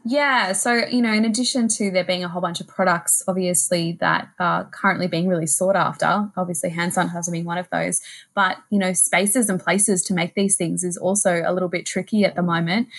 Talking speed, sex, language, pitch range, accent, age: 220 wpm, female, English, 180-200 Hz, Australian, 20-39